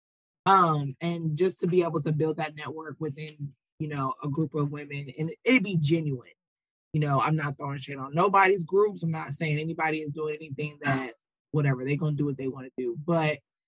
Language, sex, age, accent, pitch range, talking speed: English, male, 20-39, American, 150-175 Hz, 210 wpm